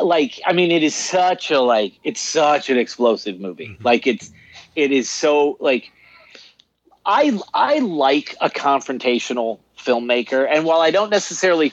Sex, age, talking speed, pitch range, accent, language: male, 40-59, 155 wpm, 115-155 Hz, American, English